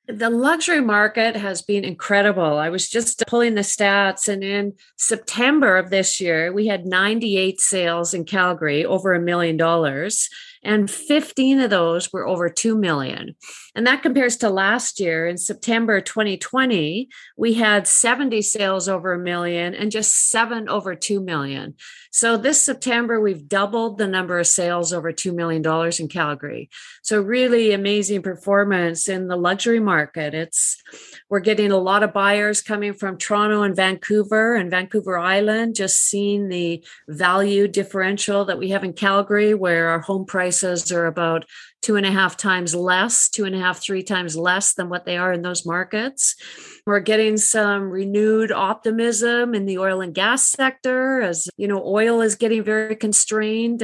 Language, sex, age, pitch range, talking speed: English, female, 50-69, 185-220 Hz, 170 wpm